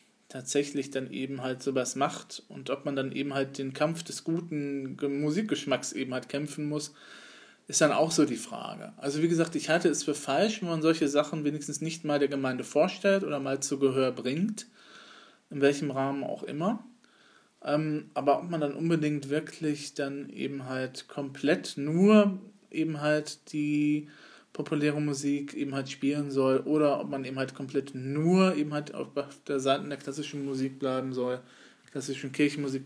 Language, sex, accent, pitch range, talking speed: German, male, German, 135-155 Hz, 170 wpm